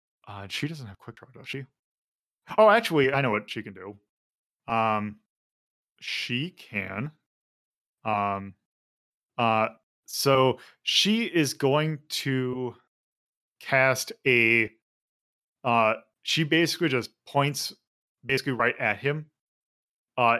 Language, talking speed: English, 110 wpm